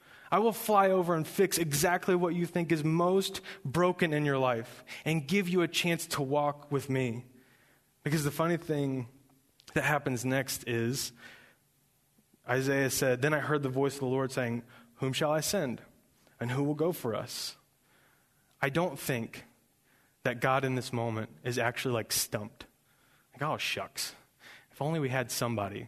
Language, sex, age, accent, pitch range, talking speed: English, male, 20-39, American, 130-165 Hz, 175 wpm